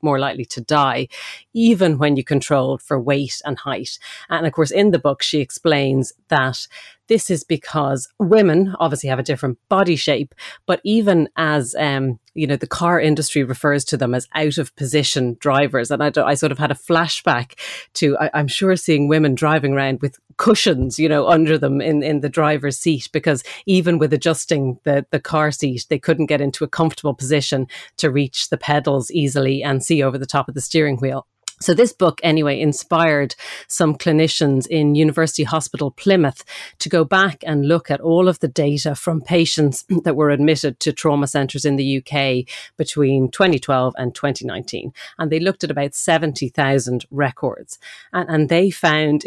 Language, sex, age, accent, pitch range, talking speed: English, female, 30-49, Irish, 140-160 Hz, 180 wpm